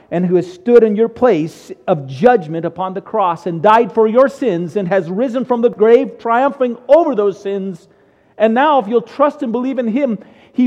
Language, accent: English, American